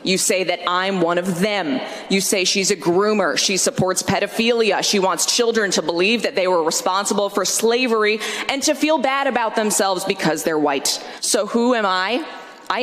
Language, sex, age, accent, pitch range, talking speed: English, female, 20-39, American, 185-225 Hz, 185 wpm